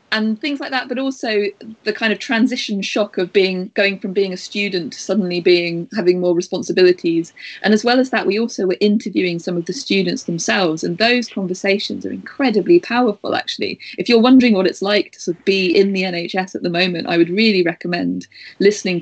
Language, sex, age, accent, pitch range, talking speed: English, female, 30-49, British, 180-215 Hz, 200 wpm